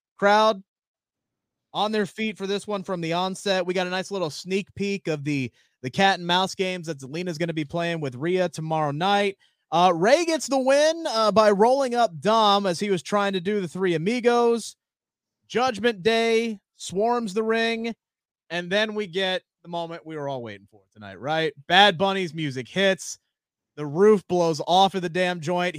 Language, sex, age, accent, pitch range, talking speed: English, male, 30-49, American, 150-200 Hz, 195 wpm